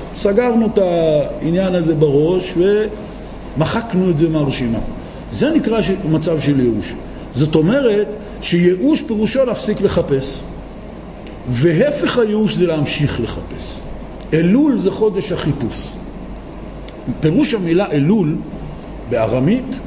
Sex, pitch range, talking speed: male, 145-210 Hz, 100 wpm